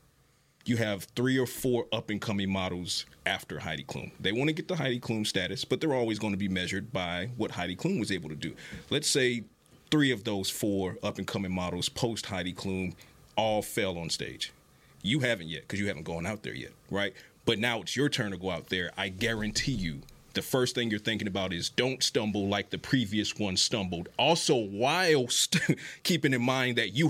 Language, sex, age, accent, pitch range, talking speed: English, male, 40-59, American, 100-130 Hz, 200 wpm